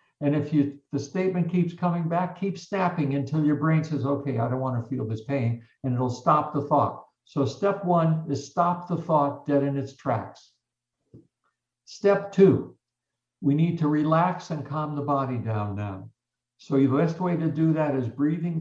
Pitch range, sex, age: 125-155 Hz, male, 60-79